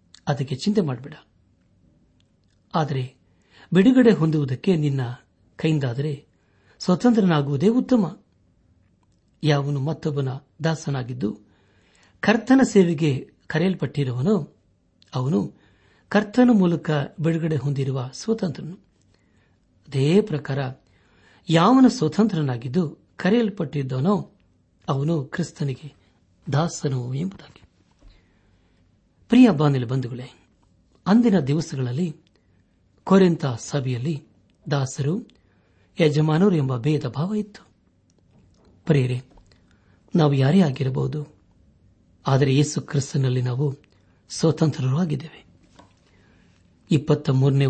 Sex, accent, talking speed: male, native, 70 wpm